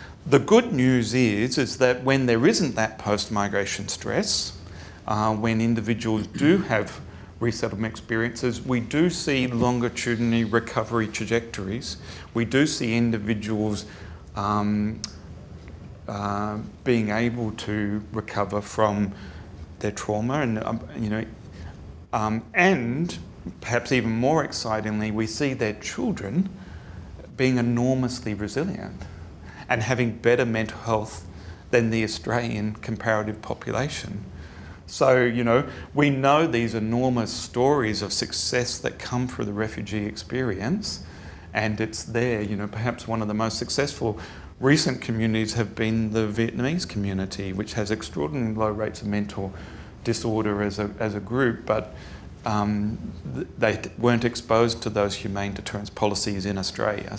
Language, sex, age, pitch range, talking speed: English, male, 40-59, 100-120 Hz, 130 wpm